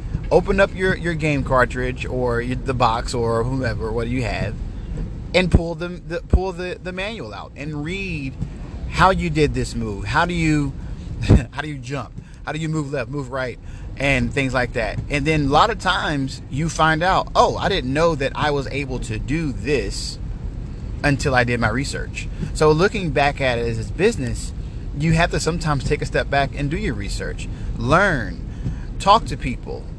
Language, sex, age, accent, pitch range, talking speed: English, male, 30-49, American, 120-155 Hz, 200 wpm